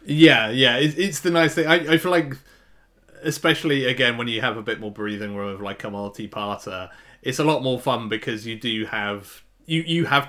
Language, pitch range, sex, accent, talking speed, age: English, 105-130 Hz, male, British, 205 wpm, 30-49